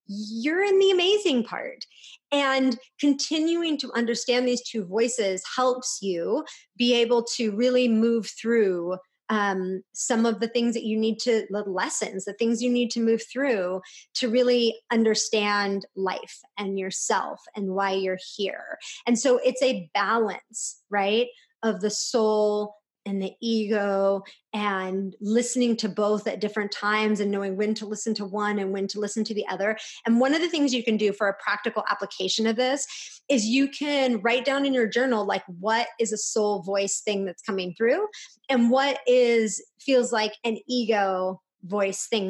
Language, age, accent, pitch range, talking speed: English, 30-49, American, 205-250 Hz, 175 wpm